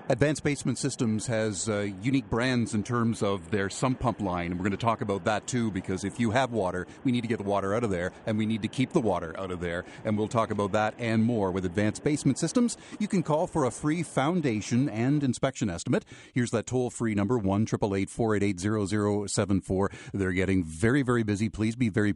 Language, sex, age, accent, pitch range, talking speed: English, male, 40-59, American, 100-130 Hz, 240 wpm